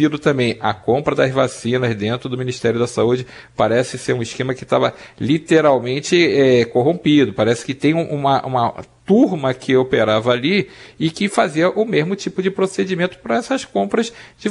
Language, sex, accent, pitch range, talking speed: Portuguese, male, Brazilian, 135-190 Hz, 160 wpm